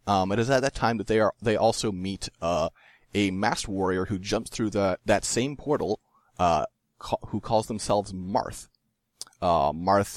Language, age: English, 30-49